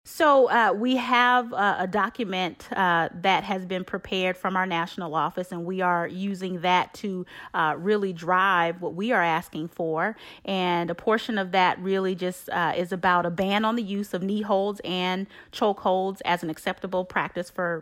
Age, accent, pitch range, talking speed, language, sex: 30-49, American, 180-215 Hz, 190 wpm, English, female